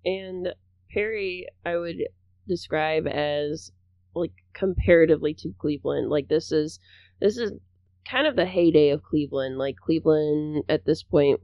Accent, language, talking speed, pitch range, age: American, English, 135 wpm, 120-160 Hz, 20-39